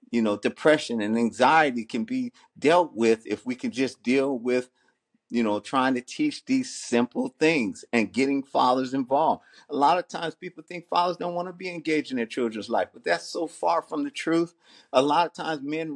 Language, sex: English, male